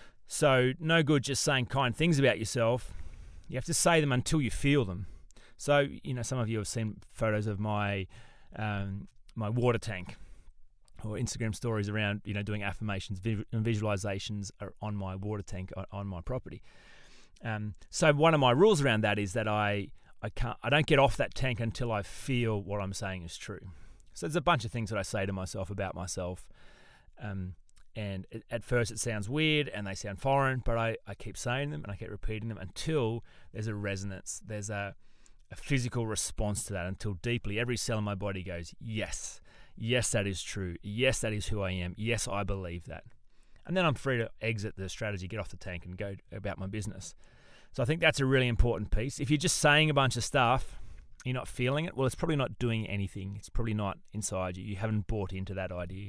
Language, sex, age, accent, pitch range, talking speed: English, male, 30-49, Australian, 100-120 Hz, 215 wpm